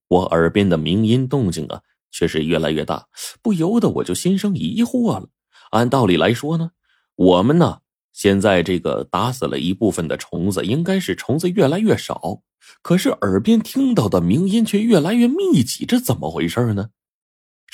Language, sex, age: Chinese, male, 30-49